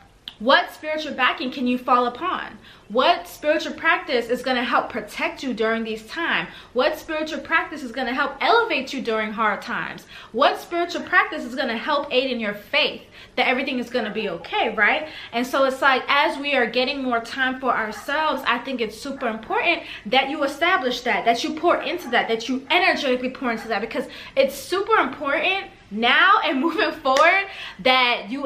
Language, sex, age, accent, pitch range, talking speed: English, female, 20-39, American, 245-320 Hz, 195 wpm